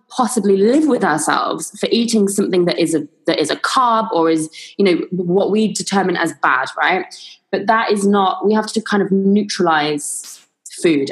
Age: 20-39